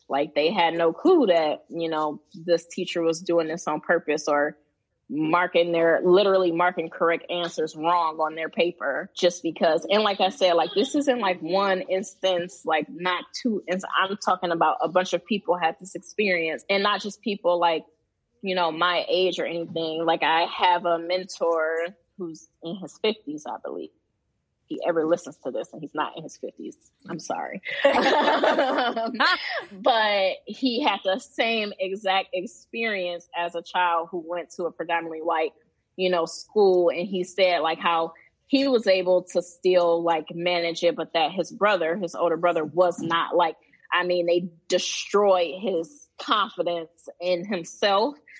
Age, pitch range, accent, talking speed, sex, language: 20-39, 165-195 Hz, American, 170 wpm, female, English